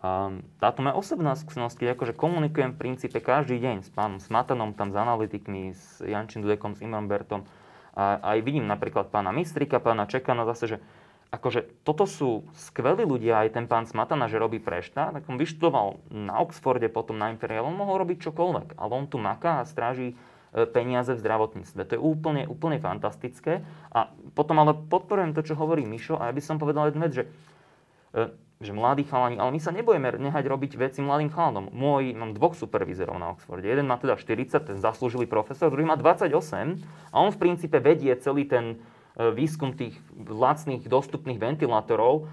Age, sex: 20-39, male